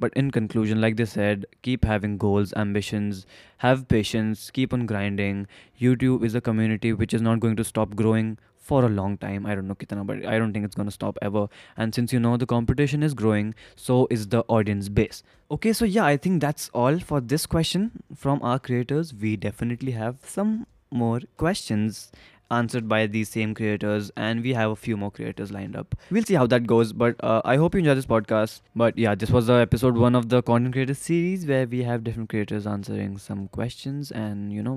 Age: 20-39